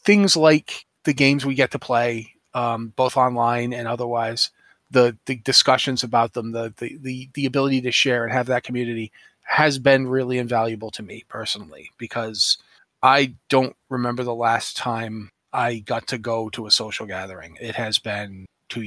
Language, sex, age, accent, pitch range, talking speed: English, male, 30-49, American, 120-145 Hz, 170 wpm